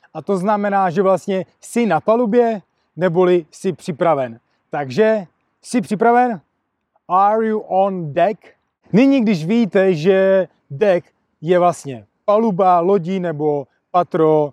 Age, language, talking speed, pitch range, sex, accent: 30-49, Czech, 120 wpm, 165-205 Hz, male, native